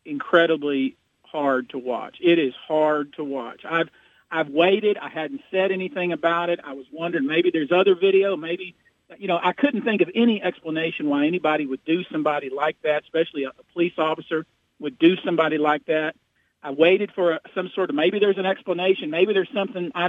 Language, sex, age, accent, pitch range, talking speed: English, male, 50-69, American, 150-205 Hz, 195 wpm